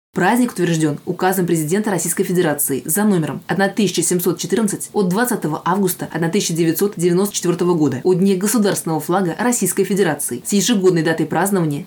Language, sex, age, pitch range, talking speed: Russian, female, 20-39, 165-195 Hz, 120 wpm